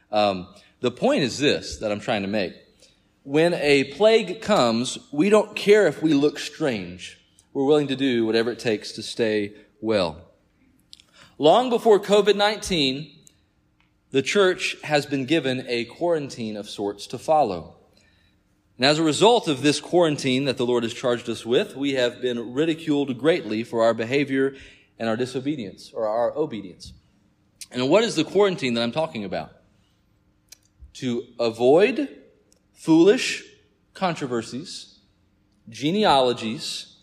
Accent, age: American, 40-59